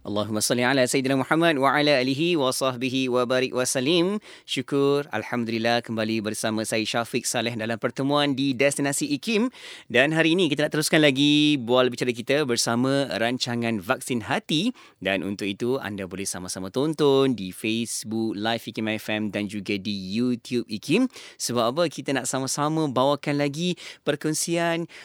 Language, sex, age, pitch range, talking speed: English, male, 20-39, 110-145 Hz, 155 wpm